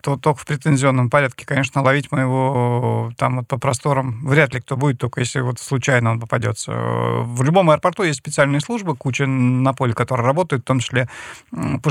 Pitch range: 120-140 Hz